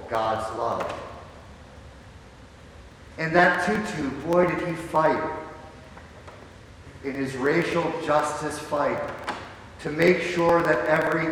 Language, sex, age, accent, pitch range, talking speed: English, male, 50-69, American, 140-180 Hz, 100 wpm